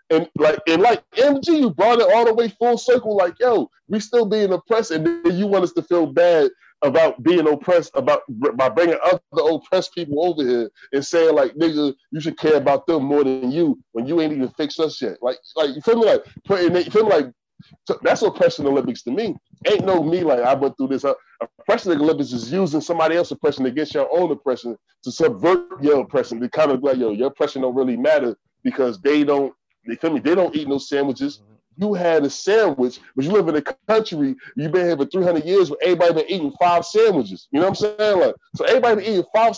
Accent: American